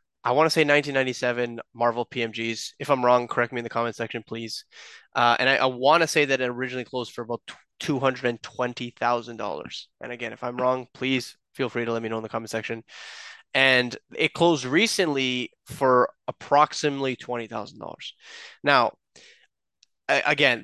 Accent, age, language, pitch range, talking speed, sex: American, 20-39, English, 120-145 Hz, 165 wpm, male